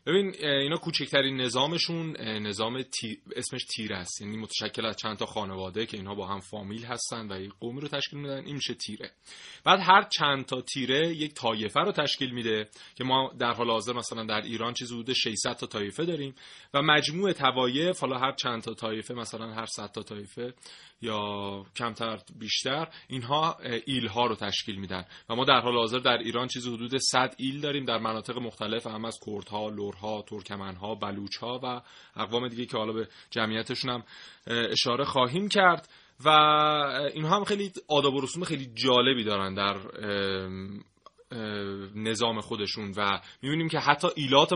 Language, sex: Persian, male